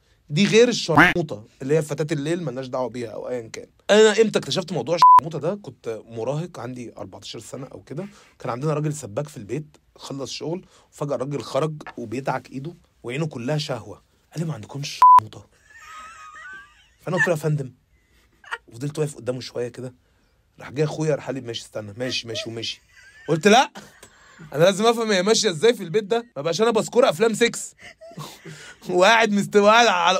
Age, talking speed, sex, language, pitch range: 30-49, 175 wpm, male, Arabic, 145-230 Hz